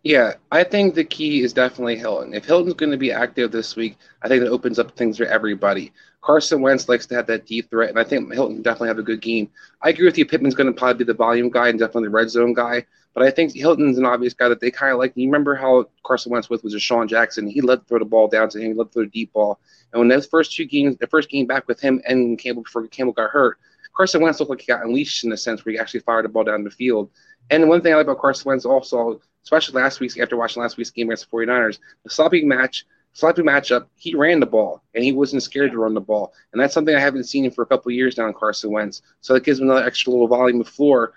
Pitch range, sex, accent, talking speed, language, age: 115-135 Hz, male, American, 285 wpm, English, 30-49